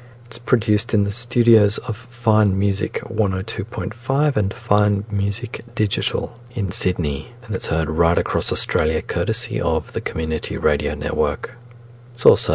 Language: English